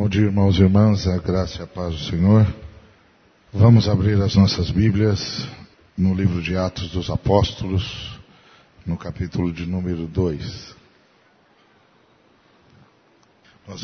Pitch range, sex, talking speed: 90-100 Hz, male, 125 wpm